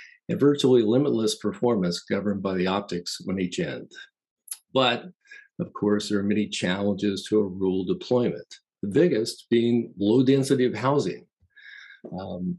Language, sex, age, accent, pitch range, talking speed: English, male, 50-69, American, 100-130 Hz, 145 wpm